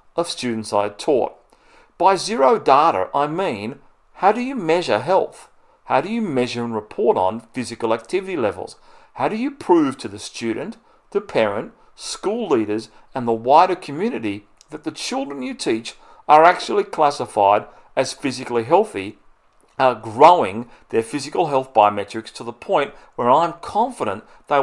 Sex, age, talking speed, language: male, 40-59, 155 wpm, English